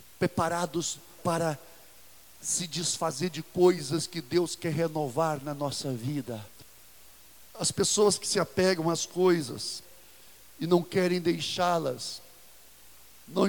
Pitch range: 165-240 Hz